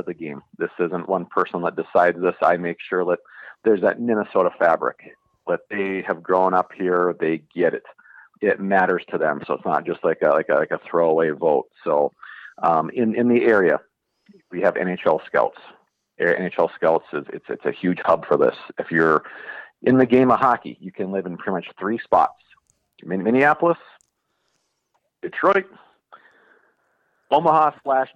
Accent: American